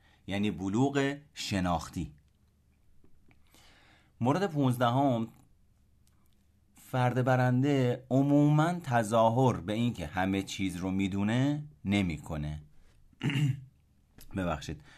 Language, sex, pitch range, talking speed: Persian, male, 85-125 Hz, 70 wpm